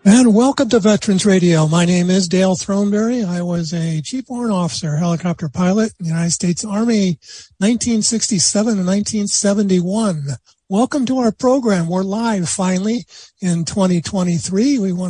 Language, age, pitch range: English, 50-69, 175-210 Hz